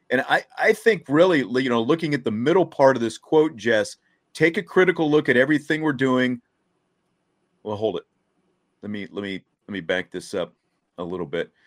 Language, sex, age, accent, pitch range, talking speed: English, male, 40-59, American, 110-145 Hz, 200 wpm